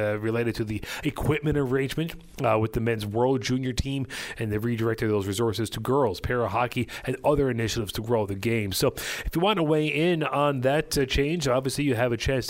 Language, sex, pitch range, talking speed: English, male, 115-145 Hz, 215 wpm